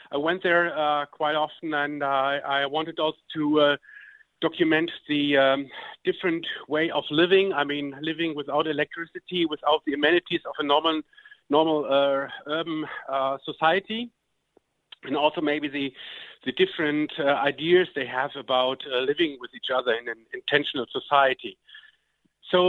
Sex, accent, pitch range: male, German, 145-195 Hz